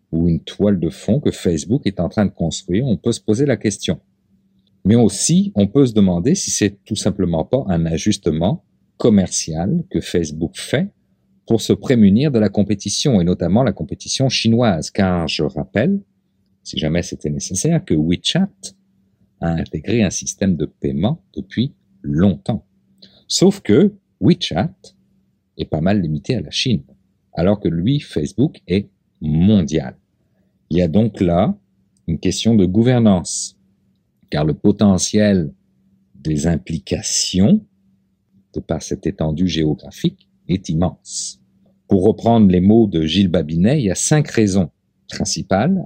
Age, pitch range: 50-69, 85-110 Hz